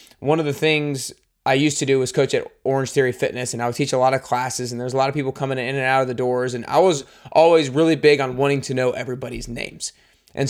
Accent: American